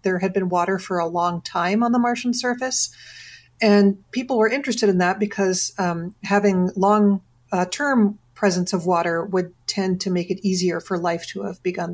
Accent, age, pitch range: American, 40-59, 180-210 Hz